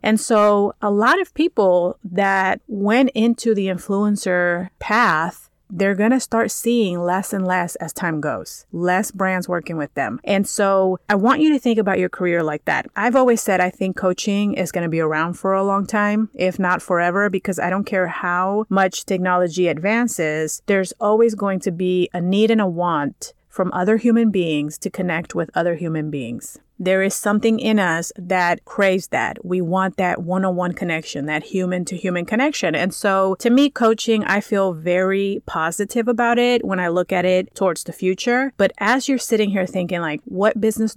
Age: 30-49